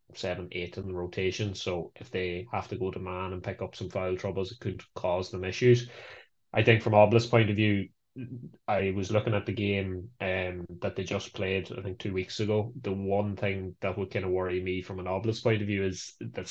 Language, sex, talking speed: English, male, 235 wpm